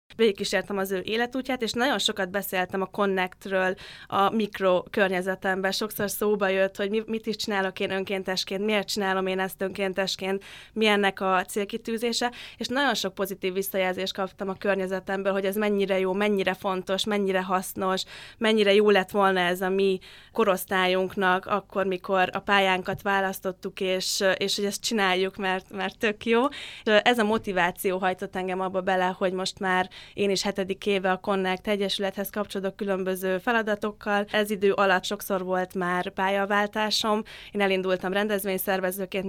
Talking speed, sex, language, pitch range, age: 155 wpm, female, Hungarian, 190-205 Hz, 20-39